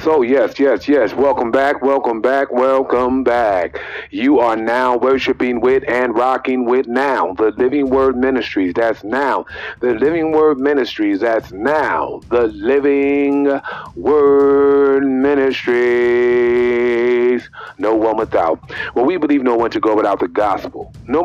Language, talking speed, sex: English, 140 wpm, male